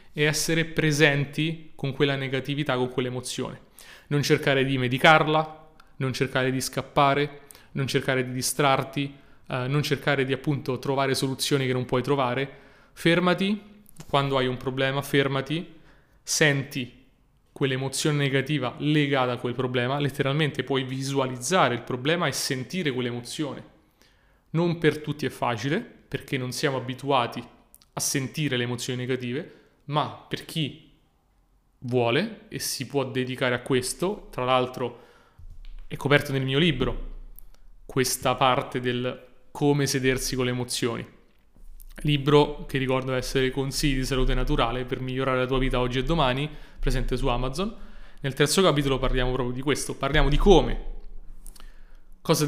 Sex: male